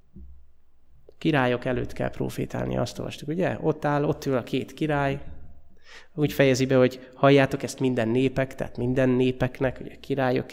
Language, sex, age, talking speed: Hungarian, male, 20-39, 150 wpm